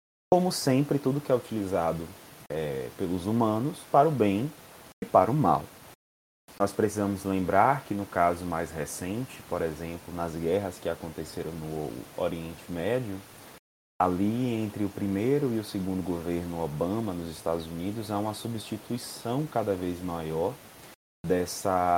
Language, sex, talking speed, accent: Portuguese, male, 140 wpm, Brazilian